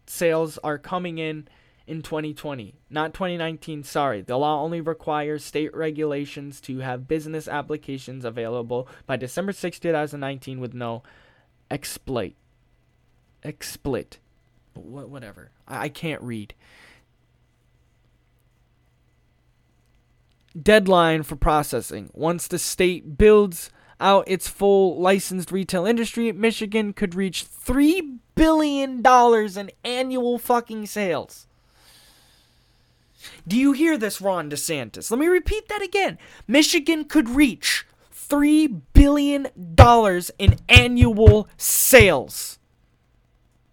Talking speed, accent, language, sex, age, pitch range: 100 wpm, American, English, male, 20-39, 140-230 Hz